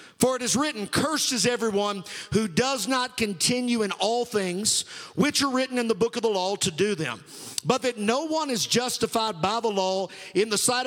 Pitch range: 205-265 Hz